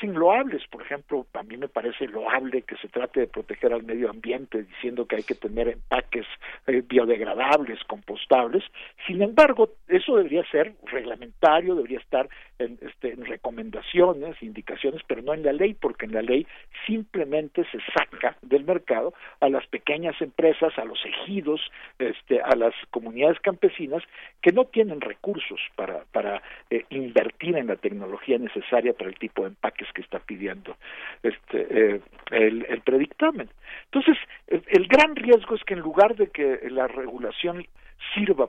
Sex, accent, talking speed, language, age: male, Mexican, 155 wpm, Spanish, 50-69